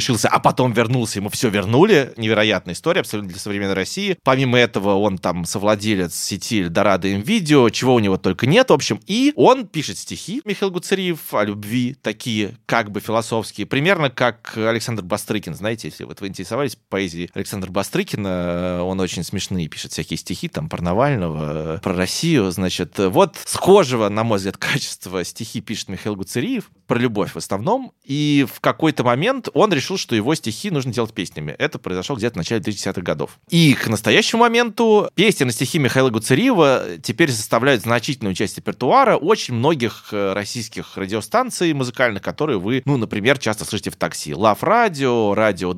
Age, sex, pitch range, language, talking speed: 20-39, male, 100-140 Hz, Russian, 165 wpm